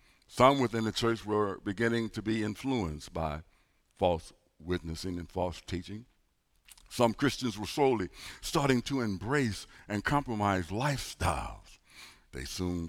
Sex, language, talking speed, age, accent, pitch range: male, English, 125 wpm, 60-79, American, 80-105 Hz